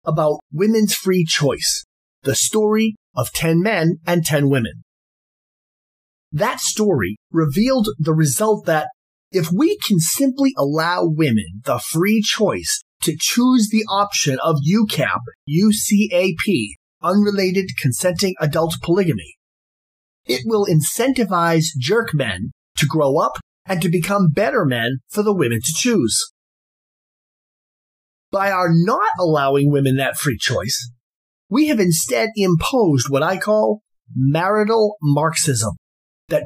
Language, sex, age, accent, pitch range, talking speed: English, male, 30-49, American, 135-210 Hz, 120 wpm